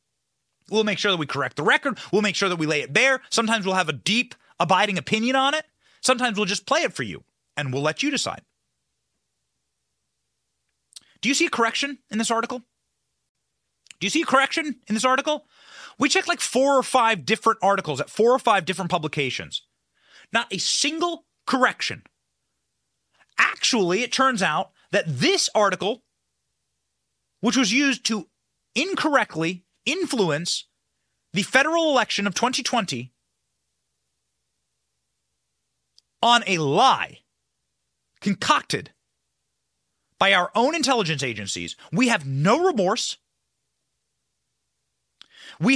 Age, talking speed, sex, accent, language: 30-49, 135 wpm, male, American, English